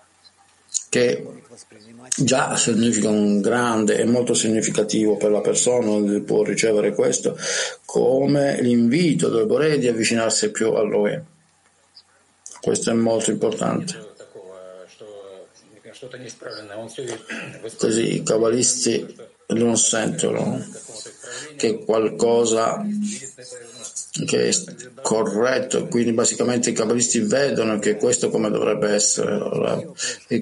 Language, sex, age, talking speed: Italian, male, 50-69, 100 wpm